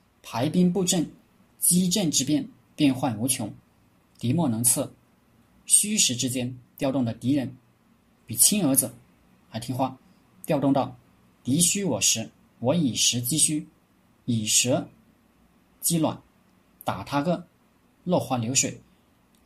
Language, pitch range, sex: Chinese, 115-145 Hz, male